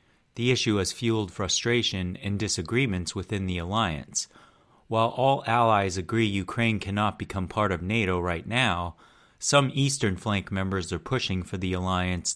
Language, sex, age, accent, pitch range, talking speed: English, male, 30-49, American, 90-115 Hz, 150 wpm